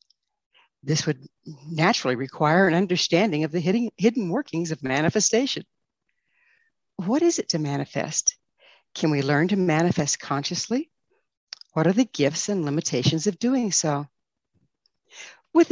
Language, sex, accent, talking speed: English, female, American, 125 wpm